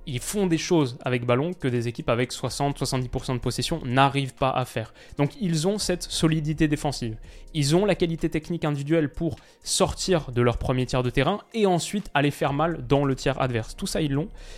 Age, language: 20-39, French